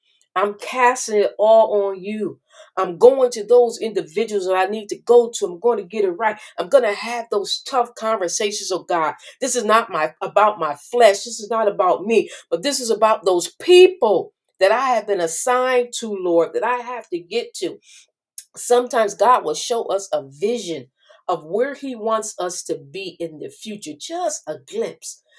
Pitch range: 200-310 Hz